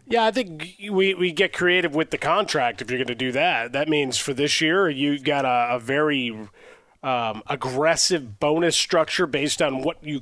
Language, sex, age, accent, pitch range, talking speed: English, male, 30-49, American, 130-155 Hz, 200 wpm